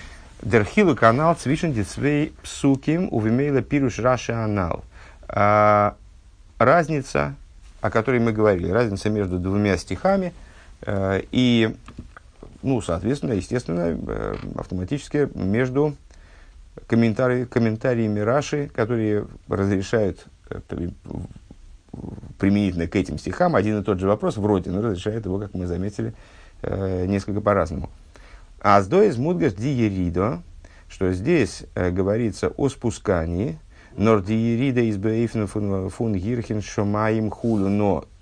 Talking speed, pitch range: 95 wpm, 95-120 Hz